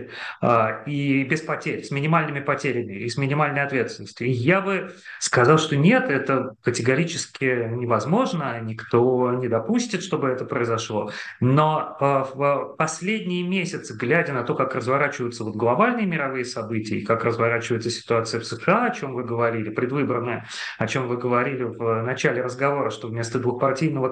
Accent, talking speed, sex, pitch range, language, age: native, 145 wpm, male, 120-150 Hz, Russian, 30-49